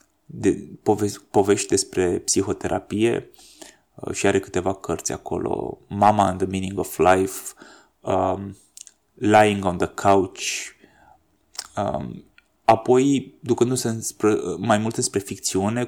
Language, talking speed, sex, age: Romanian, 110 wpm, male, 20-39